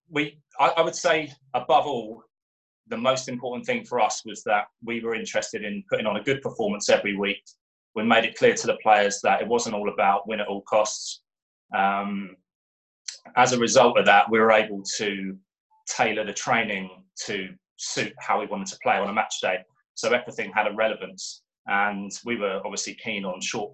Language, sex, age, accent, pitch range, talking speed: English, male, 20-39, British, 105-145 Hz, 195 wpm